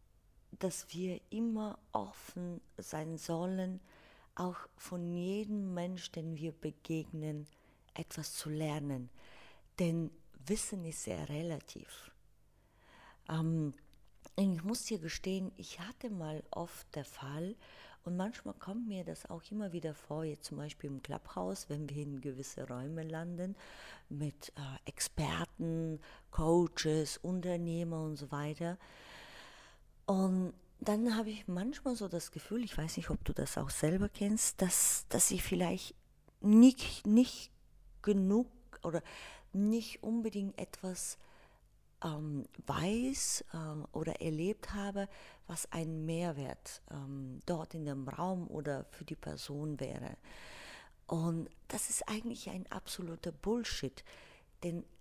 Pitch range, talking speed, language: 150-200 Hz, 125 wpm, German